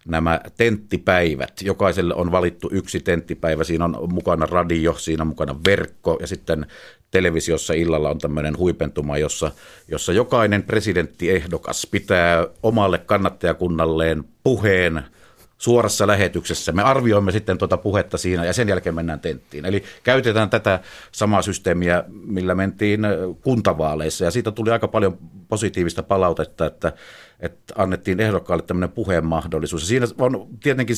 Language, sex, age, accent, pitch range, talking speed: Finnish, male, 50-69, native, 85-105 Hz, 130 wpm